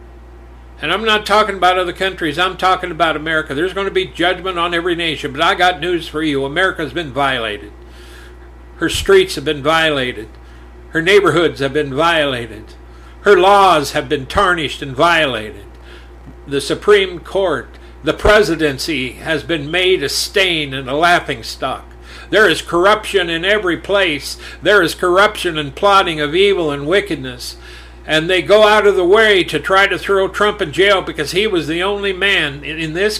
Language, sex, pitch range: English, male, 140-195 Hz